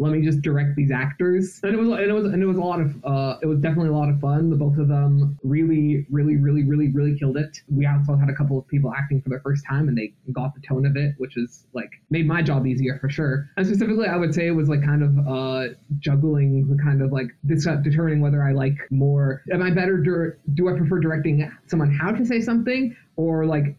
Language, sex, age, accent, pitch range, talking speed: English, male, 20-39, American, 140-160 Hz, 255 wpm